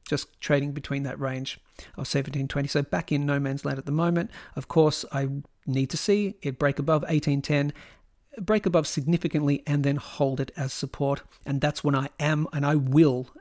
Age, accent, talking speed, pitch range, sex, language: 40-59, Australian, 200 wpm, 140-165 Hz, male, English